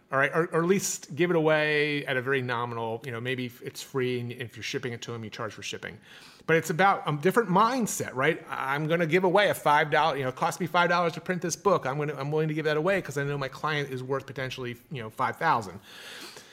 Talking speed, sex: 265 wpm, male